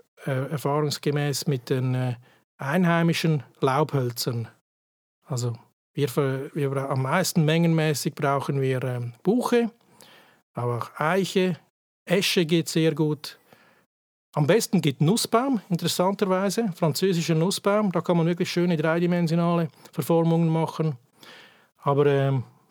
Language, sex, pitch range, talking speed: German, male, 145-180 Hz, 115 wpm